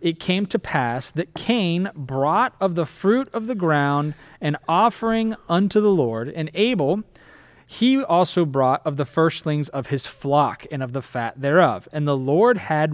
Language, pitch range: English, 135-185 Hz